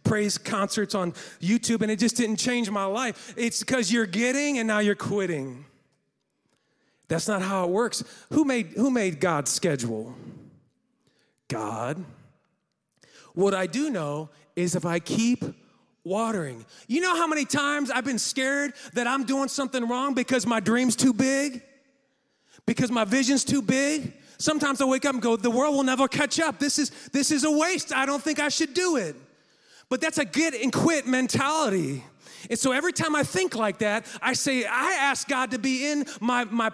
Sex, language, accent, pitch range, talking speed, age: male, English, American, 225-285 Hz, 180 wpm, 30-49